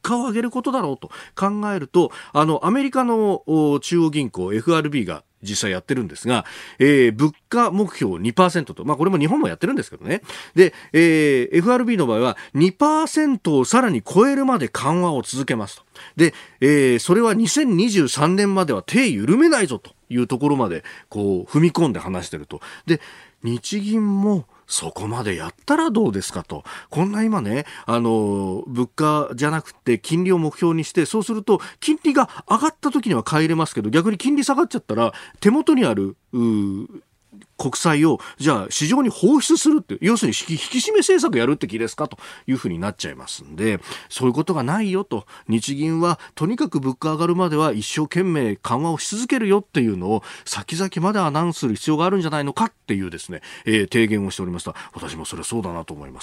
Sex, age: male, 40-59